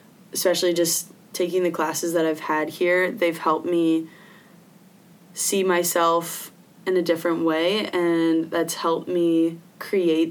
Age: 20-39